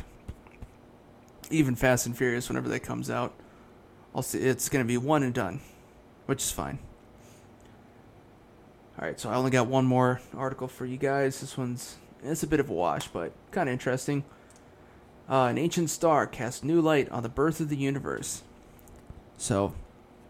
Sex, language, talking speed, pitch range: male, English, 170 wpm, 120-135 Hz